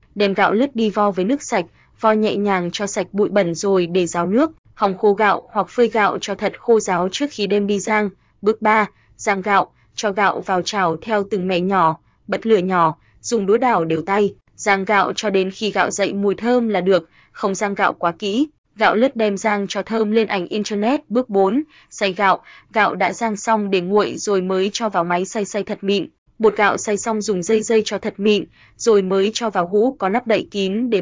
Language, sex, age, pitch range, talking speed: Vietnamese, female, 20-39, 190-225 Hz, 230 wpm